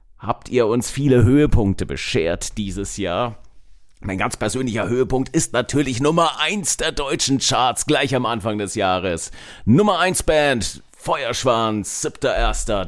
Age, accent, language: 40-59, German, German